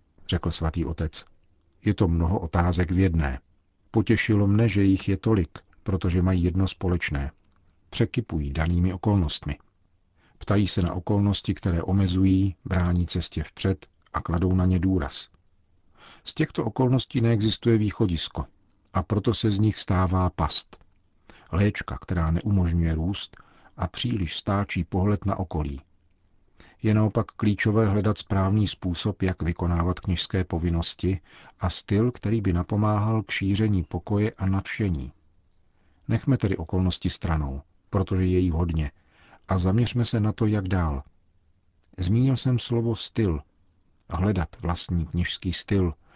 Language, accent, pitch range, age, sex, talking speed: Czech, native, 85-105 Hz, 50-69, male, 130 wpm